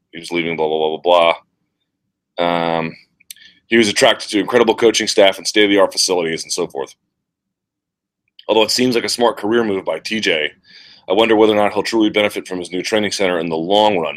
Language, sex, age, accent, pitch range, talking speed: English, male, 30-49, American, 85-105 Hz, 210 wpm